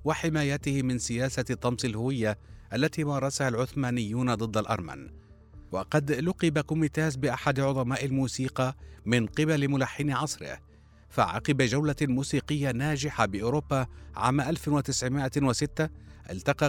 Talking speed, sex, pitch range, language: 100 wpm, male, 115-150 Hz, Arabic